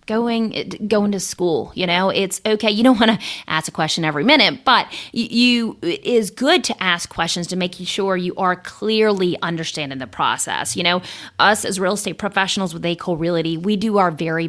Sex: female